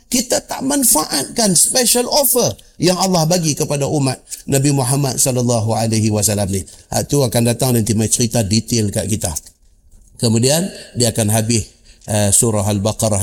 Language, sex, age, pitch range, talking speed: Malay, male, 50-69, 105-155 Hz, 135 wpm